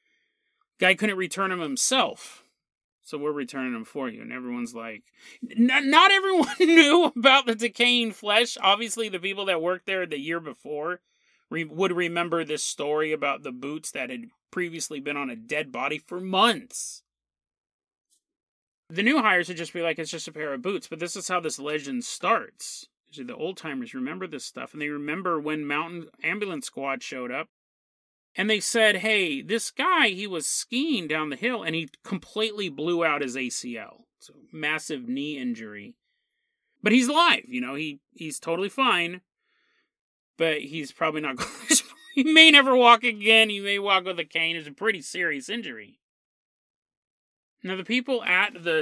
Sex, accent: male, American